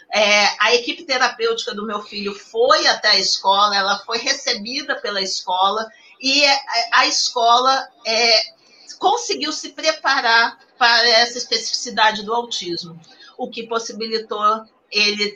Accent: Brazilian